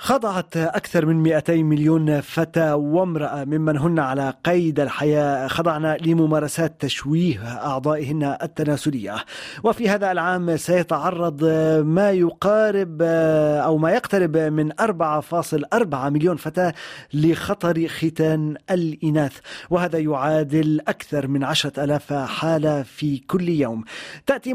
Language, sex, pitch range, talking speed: Arabic, male, 150-180 Hz, 110 wpm